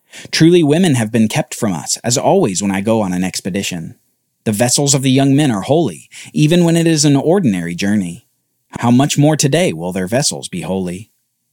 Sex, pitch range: male, 105-150 Hz